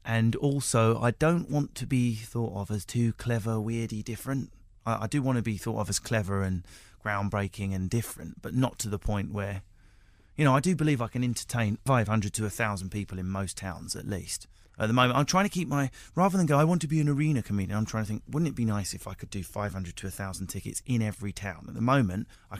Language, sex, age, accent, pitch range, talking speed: English, male, 30-49, British, 95-115 Hz, 245 wpm